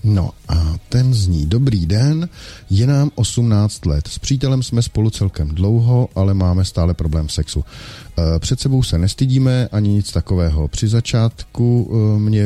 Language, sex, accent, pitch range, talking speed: Czech, male, native, 90-120 Hz, 150 wpm